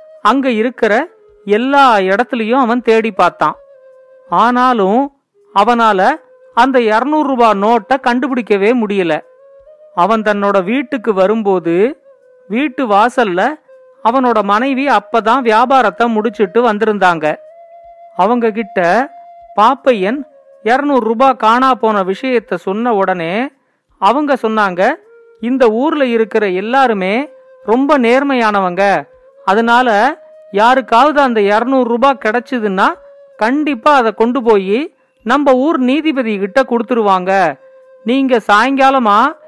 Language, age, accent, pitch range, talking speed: Tamil, 40-59, native, 215-275 Hz, 95 wpm